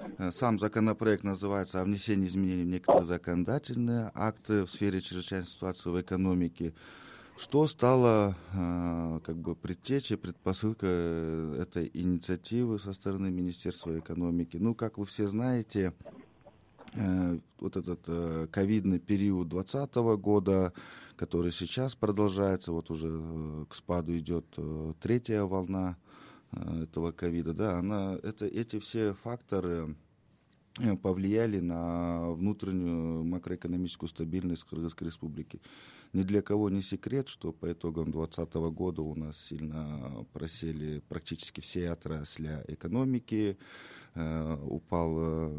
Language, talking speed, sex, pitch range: Russian, 110 wpm, male, 85-100 Hz